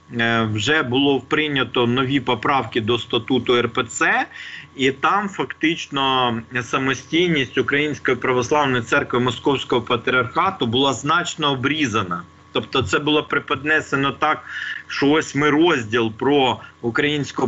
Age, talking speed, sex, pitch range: 40-59, 105 wpm, male, 120-145 Hz